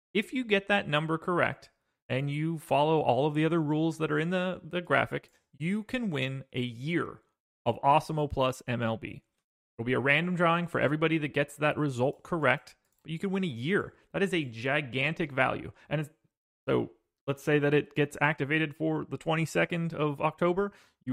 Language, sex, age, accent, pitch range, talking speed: English, male, 30-49, American, 125-160 Hz, 190 wpm